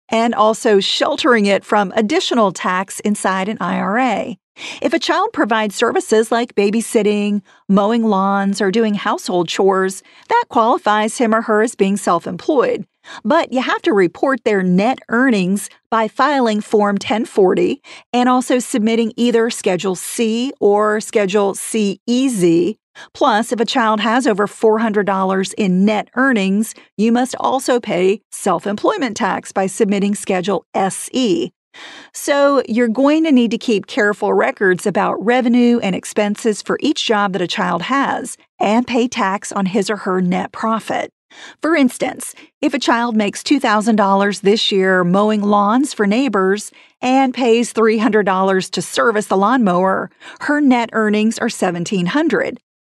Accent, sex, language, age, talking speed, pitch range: American, female, English, 40-59, 145 wpm, 200-250 Hz